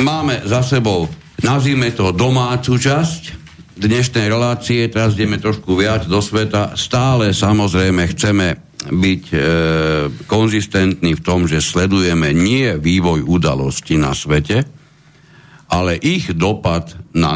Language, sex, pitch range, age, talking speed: Slovak, male, 85-110 Hz, 60-79, 120 wpm